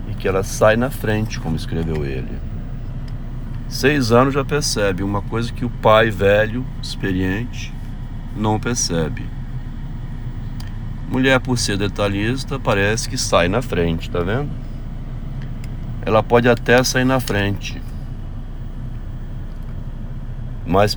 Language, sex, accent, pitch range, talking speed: Portuguese, male, Brazilian, 100-125 Hz, 110 wpm